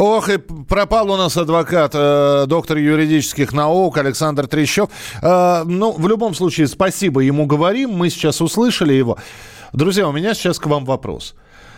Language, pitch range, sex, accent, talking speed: Russian, 125-185 Hz, male, native, 150 wpm